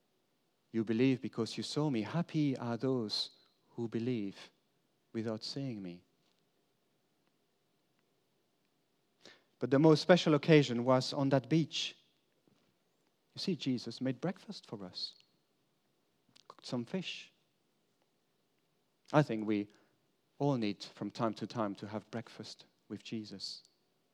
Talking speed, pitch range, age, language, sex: 115 wpm, 115-150 Hz, 40-59, English, male